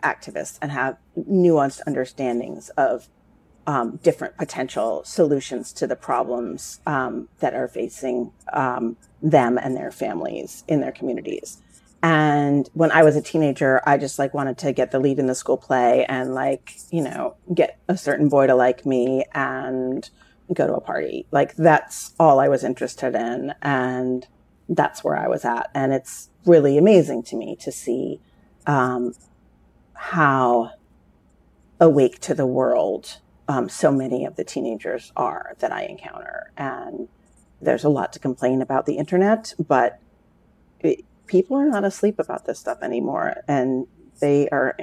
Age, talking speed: 30-49, 155 wpm